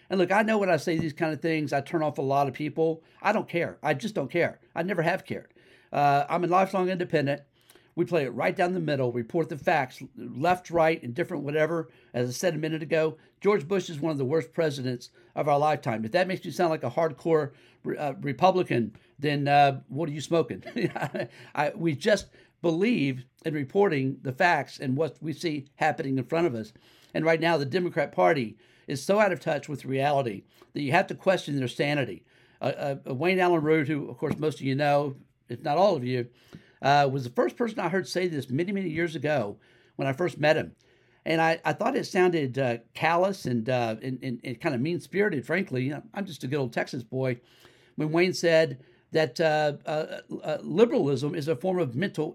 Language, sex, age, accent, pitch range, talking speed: English, male, 50-69, American, 135-170 Hz, 220 wpm